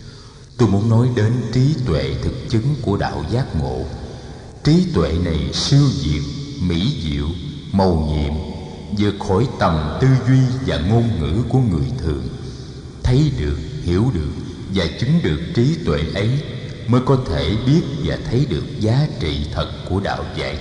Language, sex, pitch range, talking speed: Vietnamese, male, 90-130 Hz, 160 wpm